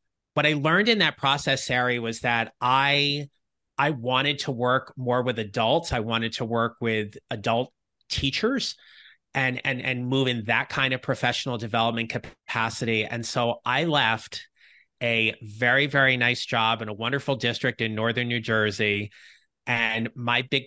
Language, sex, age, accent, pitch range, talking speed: English, male, 30-49, American, 110-130 Hz, 160 wpm